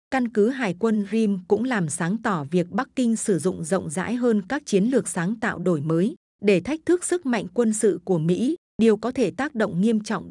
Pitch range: 185-230 Hz